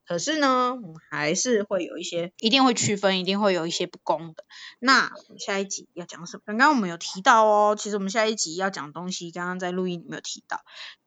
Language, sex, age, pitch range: Chinese, female, 20-39, 175-220 Hz